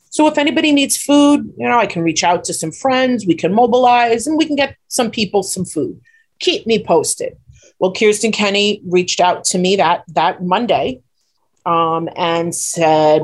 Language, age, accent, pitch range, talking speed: English, 30-49, American, 165-210 Hz, 185 wpm